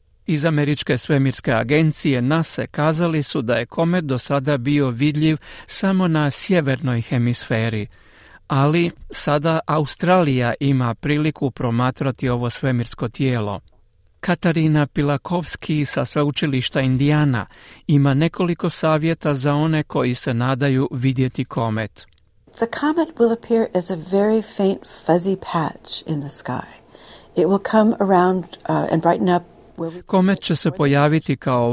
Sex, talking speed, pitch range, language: male, 125 wpm, 130-165 Hz, Croatian